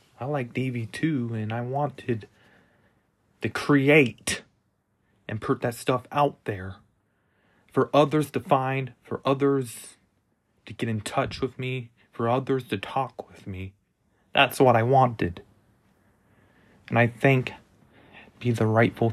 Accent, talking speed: American, 140 wpm